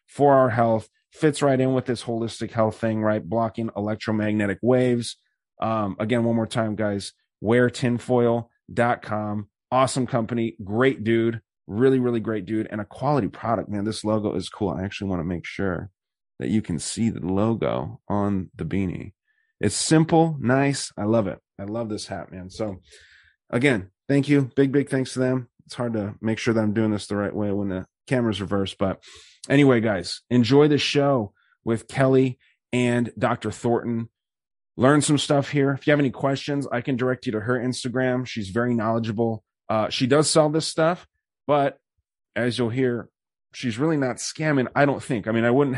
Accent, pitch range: American, 105-130 Hz